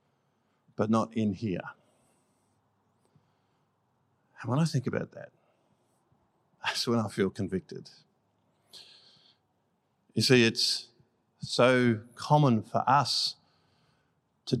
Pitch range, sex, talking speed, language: 115-150 Hz, male, 95 wpm, English